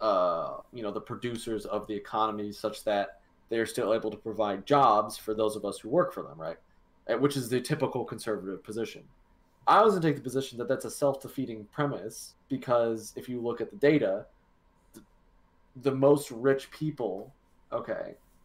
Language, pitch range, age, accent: English, 105-140 Hz, 20-39, American